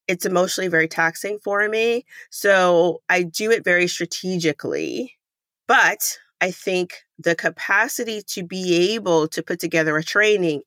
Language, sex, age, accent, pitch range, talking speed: English, female, 30-49, American, 160-205 Hz, 140 wpm